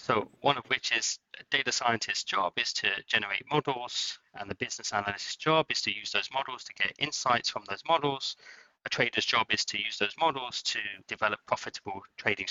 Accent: British